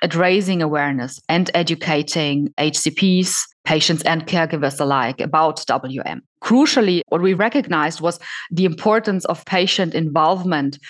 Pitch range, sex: 155-180 Hz, female